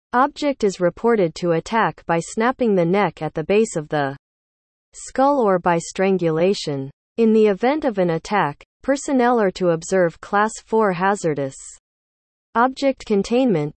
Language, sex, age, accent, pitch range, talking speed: English, female, 40-59, American, 165-225 Hz, 145 wpm